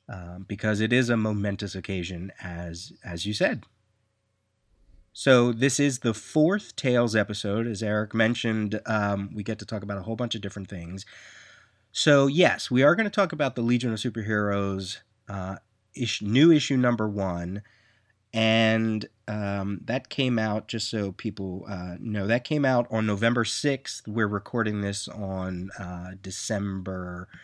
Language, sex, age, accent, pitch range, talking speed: English, male, 30-49, American, 95-120 Hz, 160 wpm